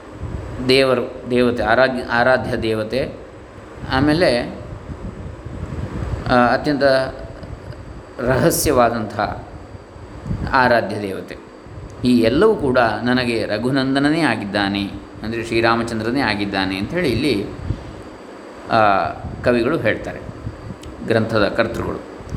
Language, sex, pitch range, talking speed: Kannada, male, 110-135 Hz, 65 wpm